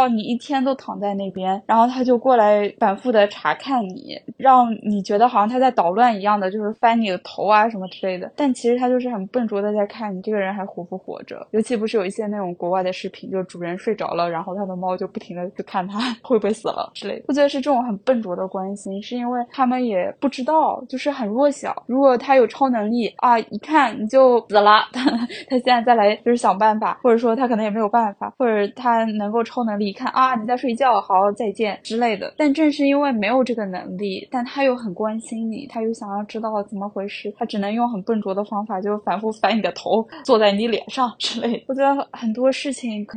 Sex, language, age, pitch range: female, Chinese, 10-29, 205-255 Hz